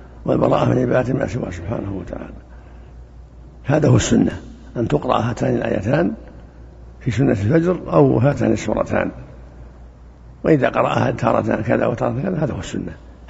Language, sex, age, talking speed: Arabic, male, 60-79, 130 wpm